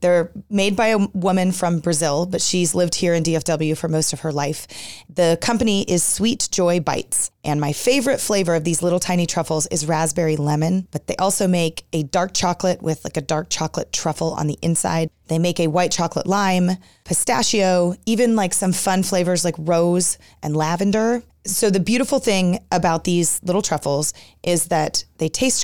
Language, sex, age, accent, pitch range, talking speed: English, female, 30-49, American, 165-195 Hz, 185 wpm